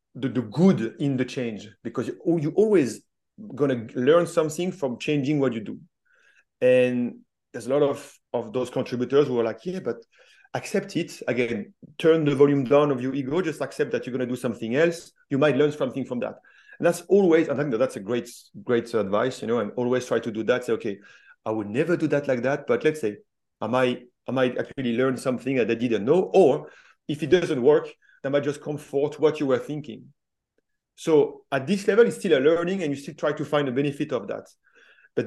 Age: 40-59